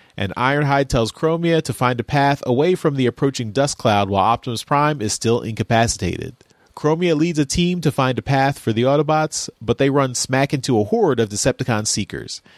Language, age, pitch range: English, 30-49, 115-145 Hz